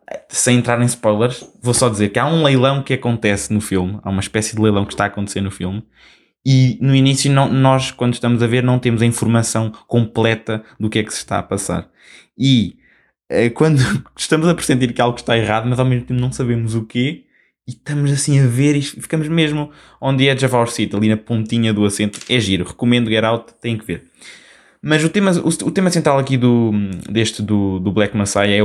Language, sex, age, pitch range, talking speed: Portuguese, male, 20-39, 105-130 Hz, 220 wpm